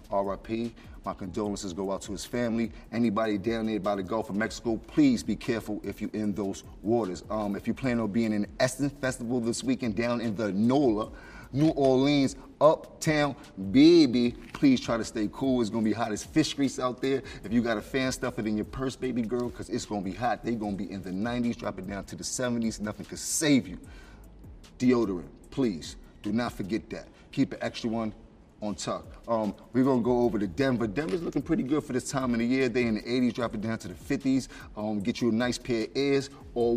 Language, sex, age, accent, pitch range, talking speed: English, male, 30-49, American, 110-130 Hz, 225 wpm